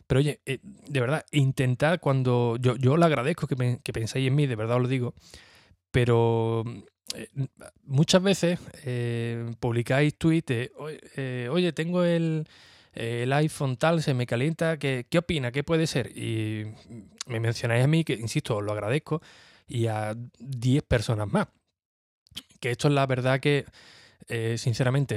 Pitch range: 115-140 Hz